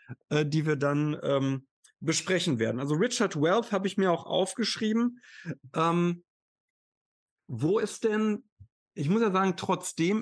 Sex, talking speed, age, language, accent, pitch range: male, 135 wpm, 50-69, German, German, 140-190 Hz